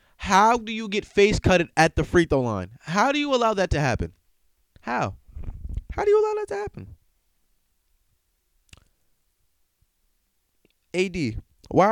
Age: 20-39